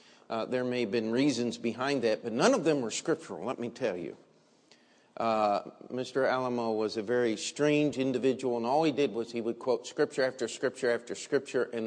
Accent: American